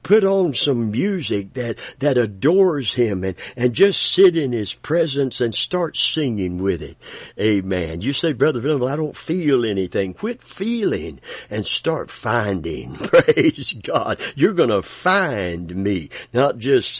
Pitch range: 110-165 Hz